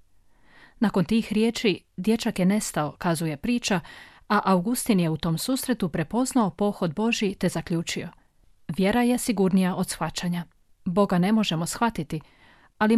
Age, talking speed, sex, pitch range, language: 40-59, 135 wpm, female, 165-215 Hz, Croatian